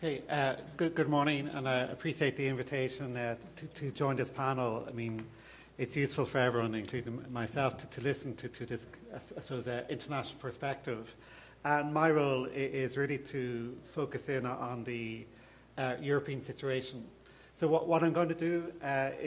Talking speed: 170 wpm